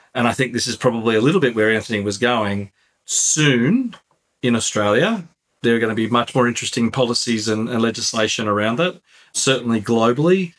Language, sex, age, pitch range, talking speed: English, male, 40-59, 110-125 Hz, 180 wpm